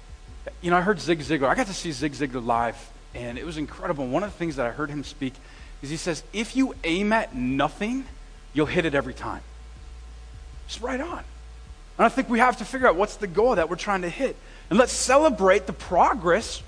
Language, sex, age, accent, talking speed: English, male, 30-49, American, 225 wpm